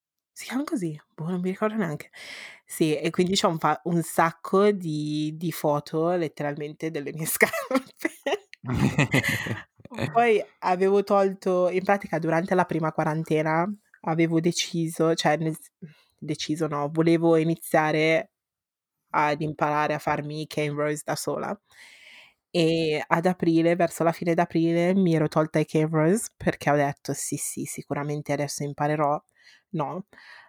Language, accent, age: Italian, native, 20-39